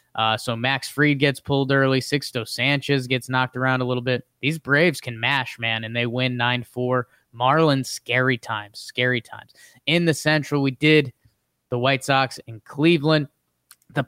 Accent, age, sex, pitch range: American, 20-39, male, 125-175 Hz